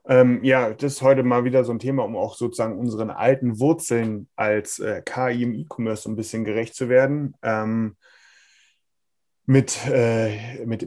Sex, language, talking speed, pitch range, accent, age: male, German, 170 wpm, 110-130 Hz, German, 30-49